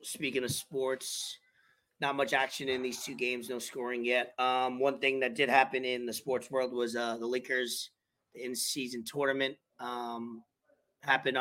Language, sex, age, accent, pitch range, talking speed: English, male, 30-49, American, 125-140 Hz, 170 wpm